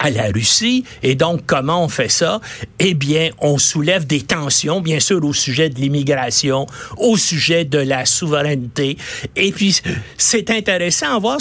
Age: 60-79